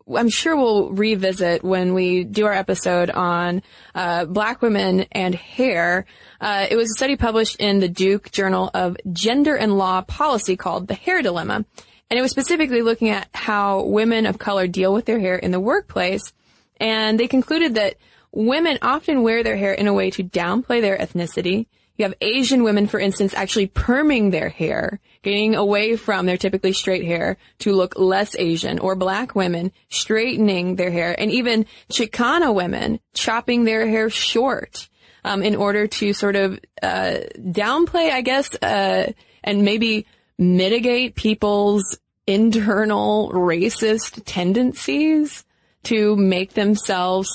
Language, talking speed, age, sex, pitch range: English, 155 wpm, 20-39, female, 185-225 Hz